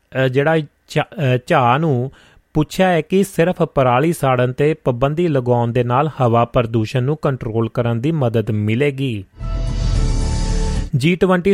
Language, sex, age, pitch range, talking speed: Punjabi, male, 30-49, 120-155 Hz, 115 wpm